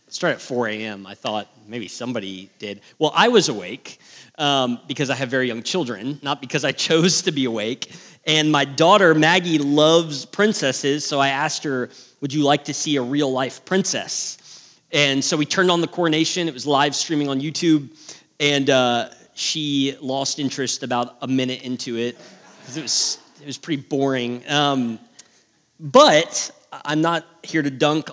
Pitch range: 135-165 Hz